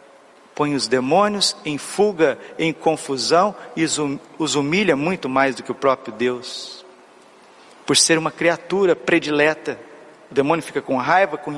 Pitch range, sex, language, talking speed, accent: 140-175 Hz, male, Portuguese, 145 wpm, Brazilian